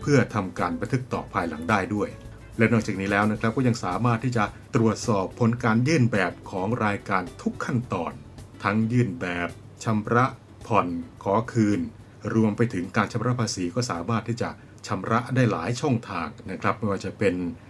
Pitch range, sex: 105-120 Hz, male